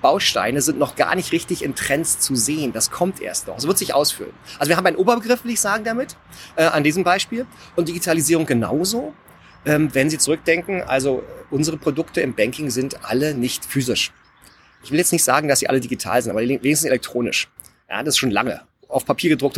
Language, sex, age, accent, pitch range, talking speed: German, male, 30-49, German, 130-170 Hz, 210 wpm